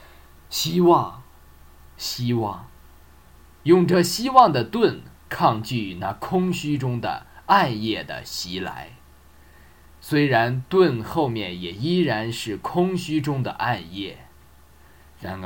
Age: 20-39